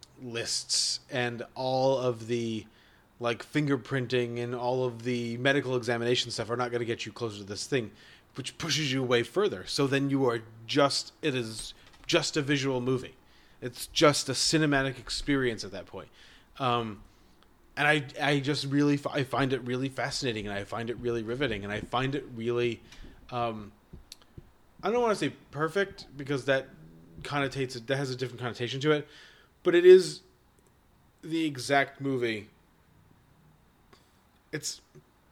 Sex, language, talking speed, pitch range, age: male, English, 160 wpm, 115-135 Hz, 30-49